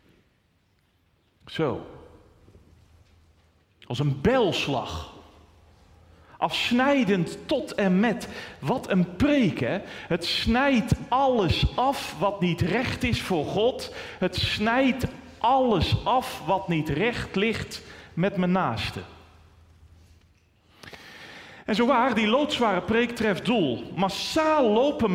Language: Dutch